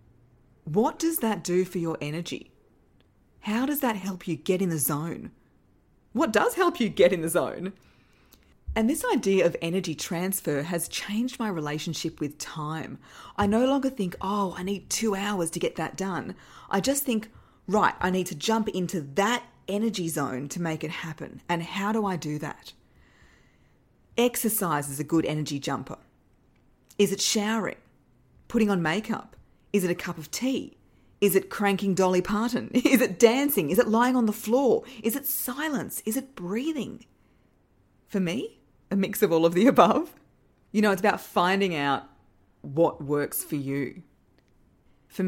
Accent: Australian